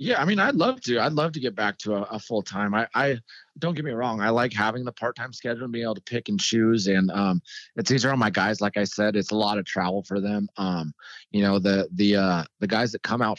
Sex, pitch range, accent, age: male, 95-120 Hz, American, 30-49